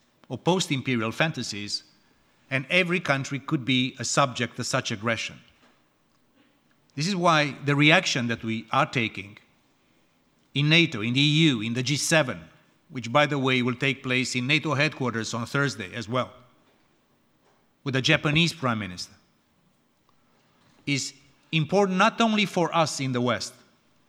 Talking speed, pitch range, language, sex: 145 wpm, 125-165 Hz, French, male